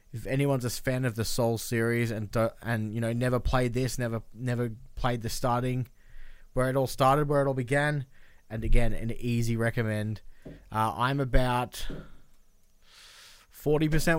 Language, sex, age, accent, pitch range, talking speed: English, male, 20-39, Australian, 110-135 Hz, 160 wpm